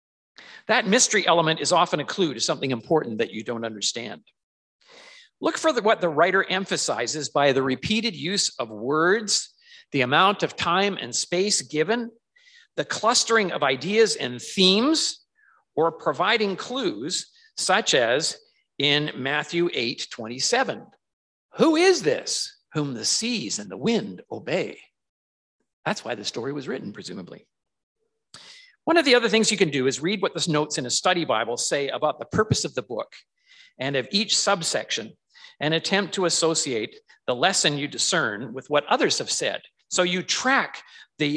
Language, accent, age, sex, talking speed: English, American, 50-69, male, 160 wpm